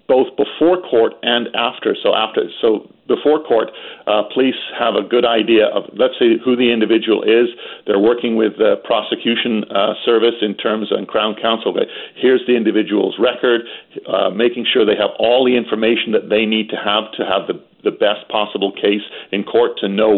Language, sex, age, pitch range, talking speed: English, male, 50-69, 105-130 Hz, 185 wpm